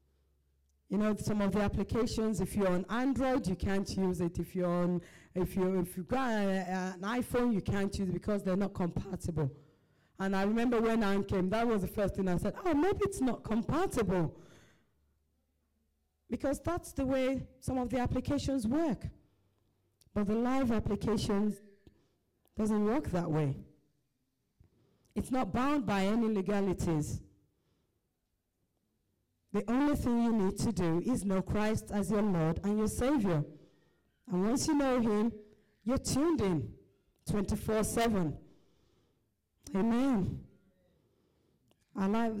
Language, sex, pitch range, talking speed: English, female, 165-230 Hz, 145 wpm